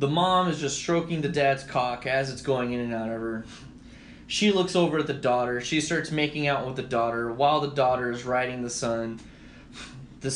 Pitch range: 125-170 Hz